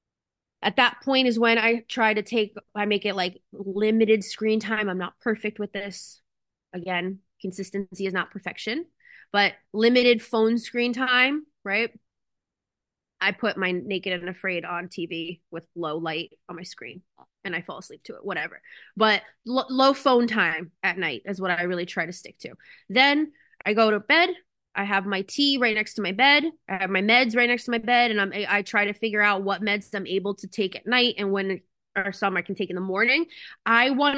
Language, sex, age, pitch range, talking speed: English, female, 20-39, 190-235 Hz, 205 wpm